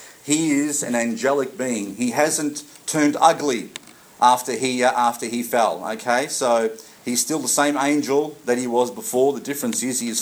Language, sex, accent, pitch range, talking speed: English, male, Australian, 115-145 Hz, 175 wpm